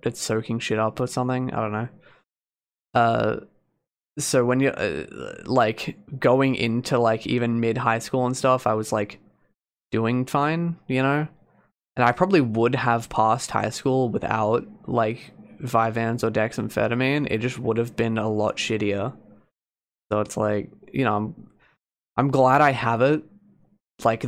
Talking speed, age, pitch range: 160 wpm, 20-39, 110-130 Hz